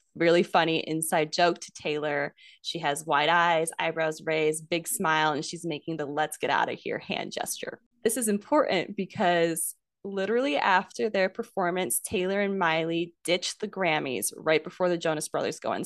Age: 20-39